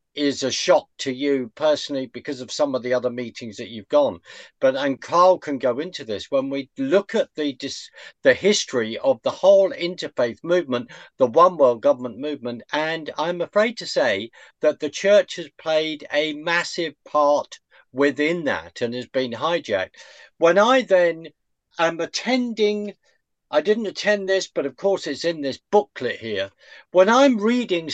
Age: 50-69